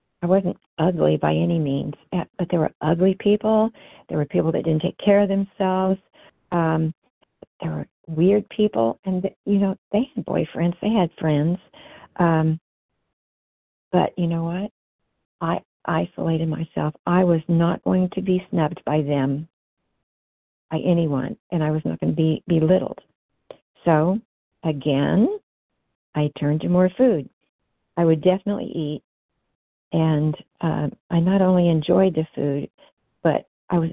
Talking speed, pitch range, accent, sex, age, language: 145 wpm, 155-190 Hz, American, female, 50-69, English